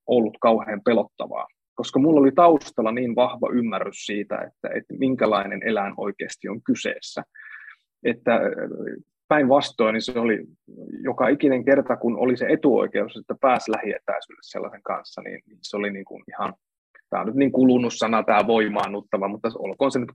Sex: male